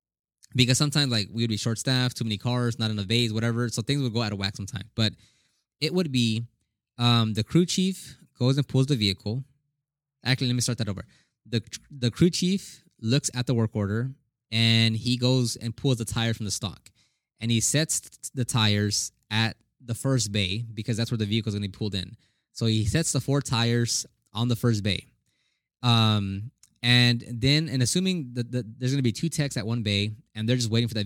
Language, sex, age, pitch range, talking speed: English, male, 20-39, 110-130 Hz, 215 wpm